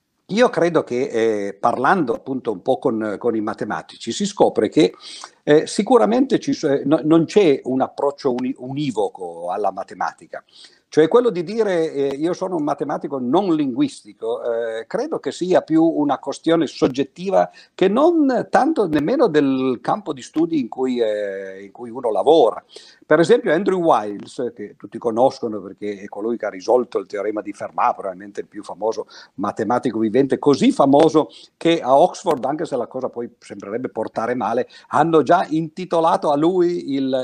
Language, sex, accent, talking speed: Italian, male, native, 170 wpm